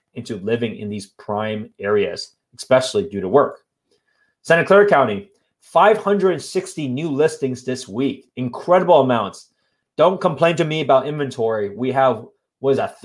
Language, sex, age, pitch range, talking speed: English, male, 30-49, 125-185 Hz, 135 wpm